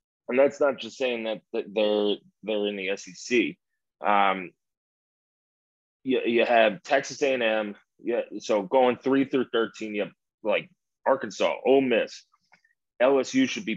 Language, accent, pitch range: English, American, 105-130 Hz